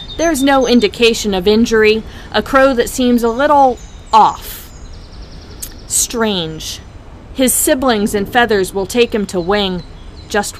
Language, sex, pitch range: English, female, 185-235 Hz